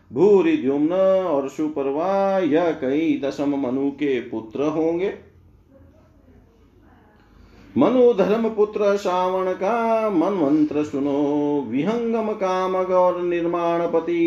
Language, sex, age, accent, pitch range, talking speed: Hindi, male, 50-69, native, 145-185 Hz, 100 wpm